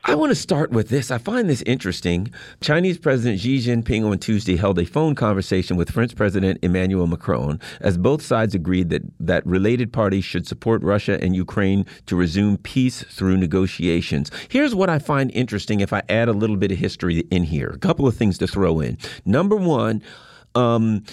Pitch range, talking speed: 100-145 Hz, 195 wpm